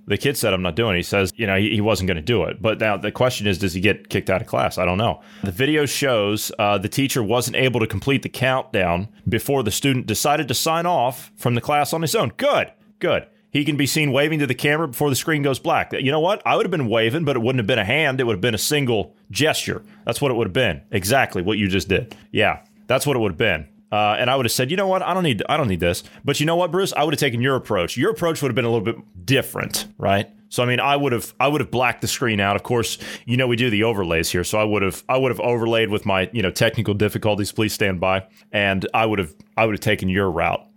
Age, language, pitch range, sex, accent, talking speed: 30-49, English, 105-135 Hz, male, American, 290 wpm